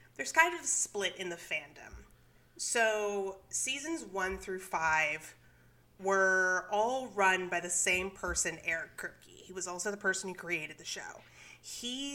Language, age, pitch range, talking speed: English, 30-49, 185-245 Hz, 160 wpm